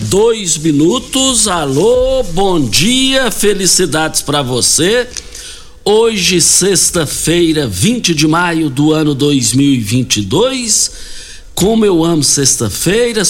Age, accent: 60-79, Brazilian